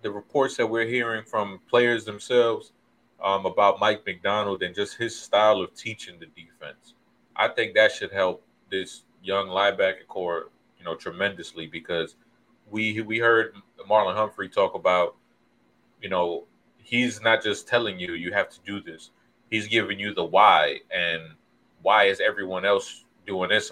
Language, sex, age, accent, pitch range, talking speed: English, male, 30-49, American, 95-115 Hz, 160 wpm